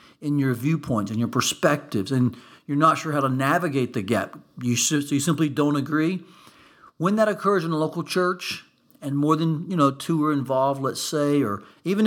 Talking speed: 200 wpm